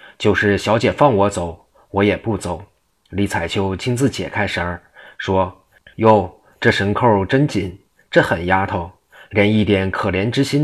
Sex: male